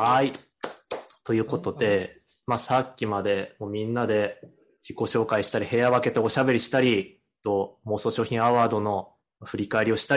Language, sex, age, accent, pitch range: Japanese, male, 20-39, native, 110-155 Hz